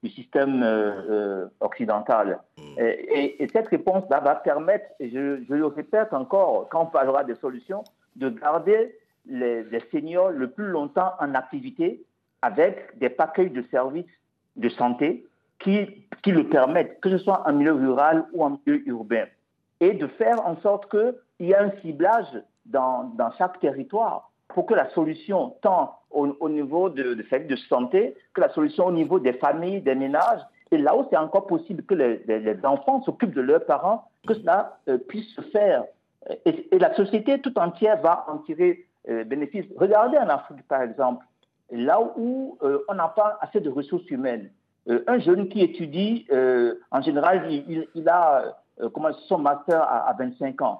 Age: 50-69